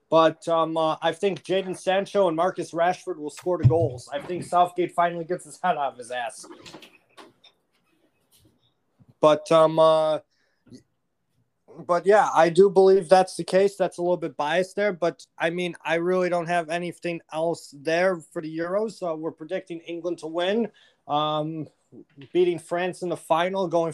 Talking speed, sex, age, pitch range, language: 170 wpm, male, 20-39, 155-180 Hz, English